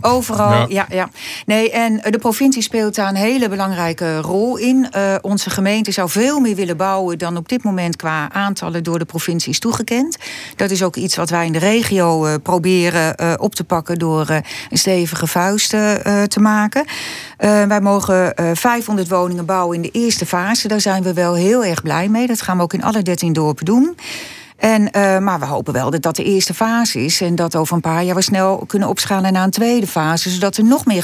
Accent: Dutch